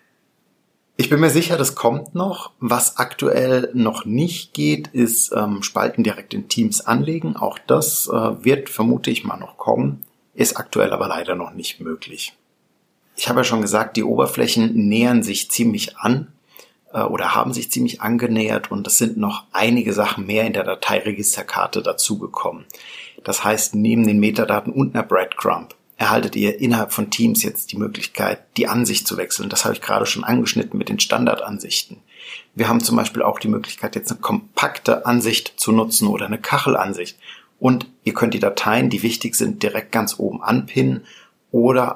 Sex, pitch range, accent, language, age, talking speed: male, 110-170 Hz, German, German, 50-69, 175 wpm